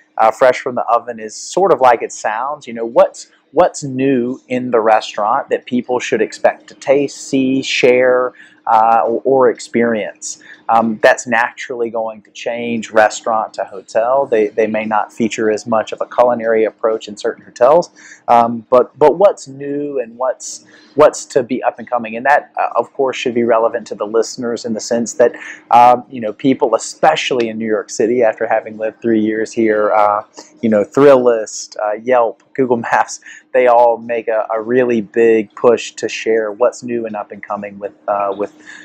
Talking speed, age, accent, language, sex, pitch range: 190 wpm, 30-49, American, English, male, 110-125 Hz